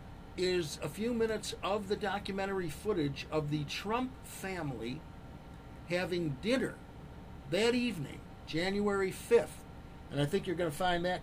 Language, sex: English, male